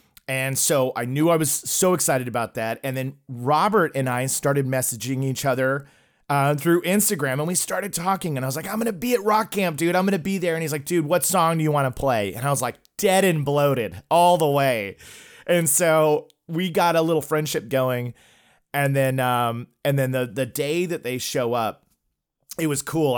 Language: English